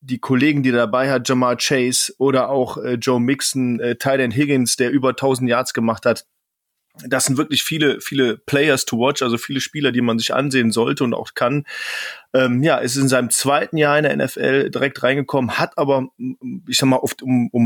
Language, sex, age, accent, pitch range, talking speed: German, male, 30-49, German, 120-150 Hz, 205 wpm